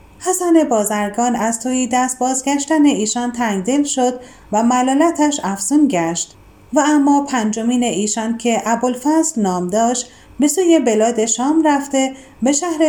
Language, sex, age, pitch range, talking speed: Persian, female, 40-59, 220-295 Hz, 130 wpm